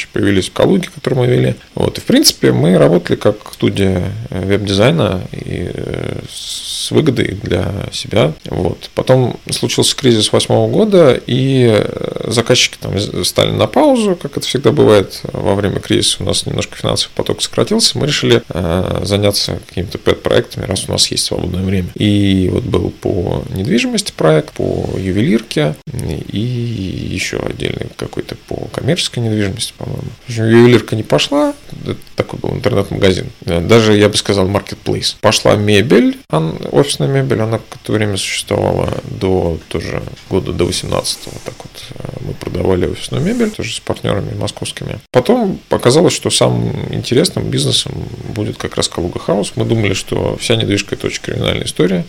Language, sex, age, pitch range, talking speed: Russian, male, 20-39, 95-130 Hz, 145 wpm